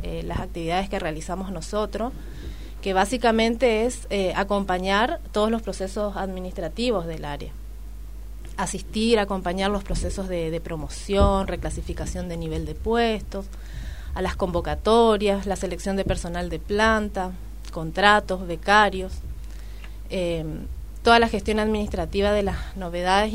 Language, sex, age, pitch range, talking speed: Spanish, female, 30-49, 170-205 Hz, 125 wpm